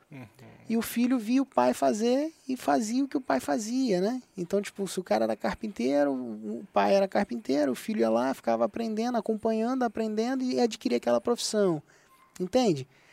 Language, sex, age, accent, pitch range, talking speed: Portuguese, male, 20-39, Brazilian, 155-210 Hz, 180 wpm